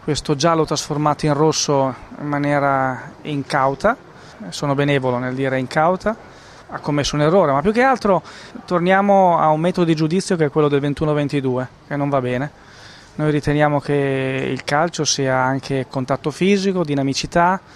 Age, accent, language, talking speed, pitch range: 20-39, native, Italian, 155 wpm, 135-160 Hz